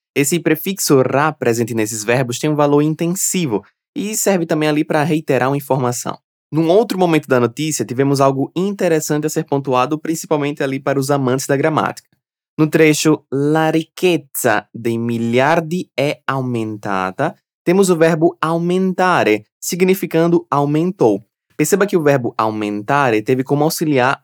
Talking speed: 145 wpm